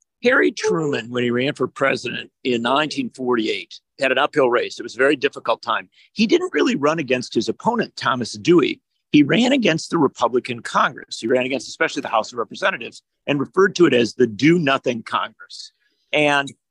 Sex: male